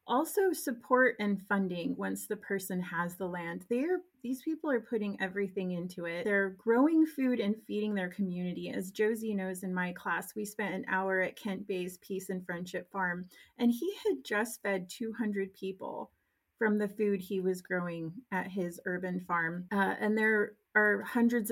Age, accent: 30-49, American